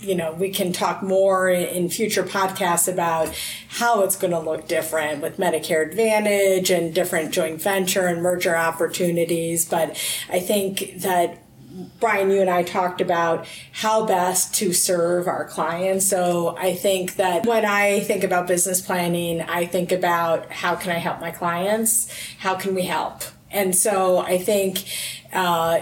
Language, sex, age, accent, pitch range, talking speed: English, female, 30-49, American, 170-195 Hz, 165 wpm